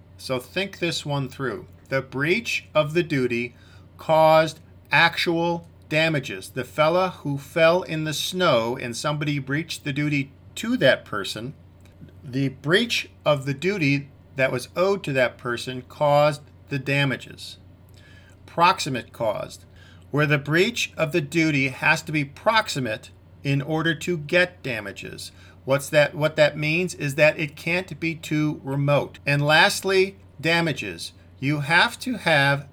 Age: 50-69